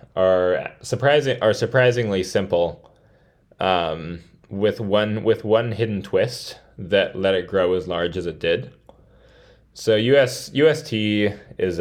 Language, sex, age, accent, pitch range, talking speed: English, male, 10-29, American, 95-115 Hz, 125 wpm